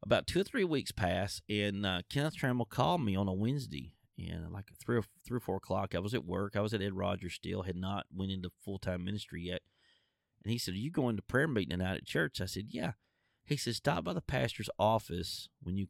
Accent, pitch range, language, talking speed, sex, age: American, 90-115 Hz, English, 235 wpm, male, 30-49